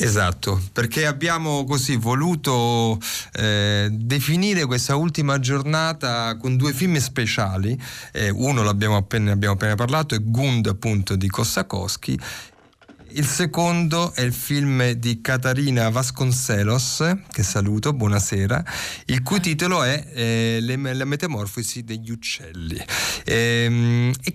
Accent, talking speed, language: native, 120 wpm, Italian